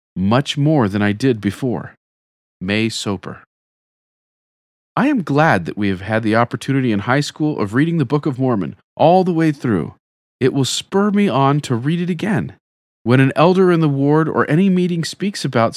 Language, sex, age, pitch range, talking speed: English, male, 40-59, 105-155 Hz, 190 wpm